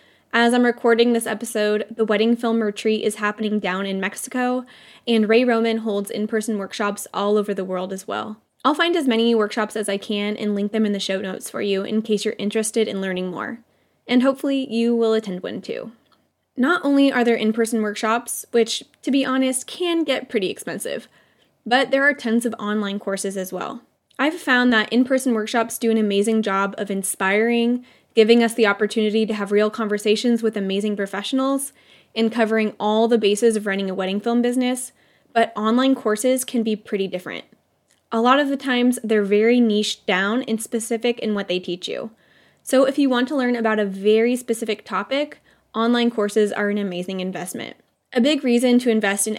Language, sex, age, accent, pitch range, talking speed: English, female, 10-29, American, 210-245 Hz, 195 wpm